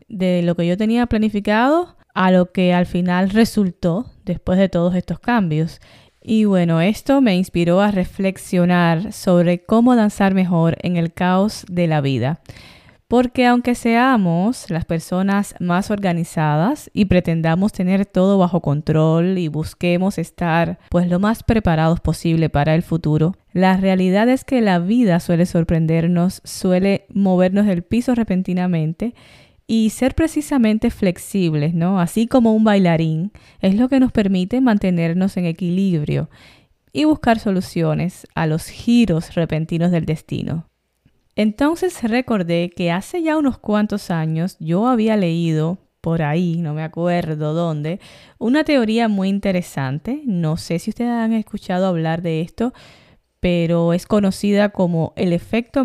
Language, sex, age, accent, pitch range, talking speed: Spanish, female, 10-29, American, 170-215 Hz, 140 wpm